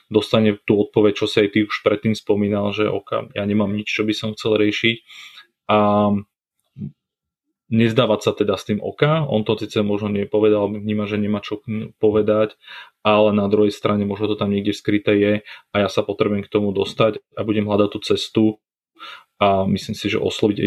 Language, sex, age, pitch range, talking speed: Slovak, male, 30-49, 100-110 Hz, 185 wpm